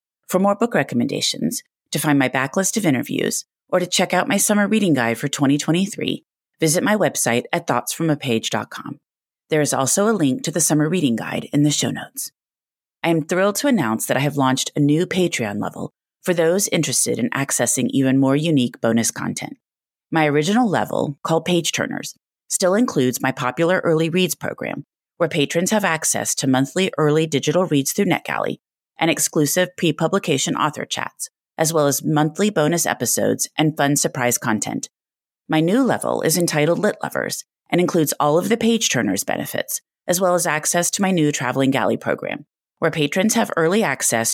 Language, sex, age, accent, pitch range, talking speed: English, female, 30-49, American, 140-185 Hz, 175 wpm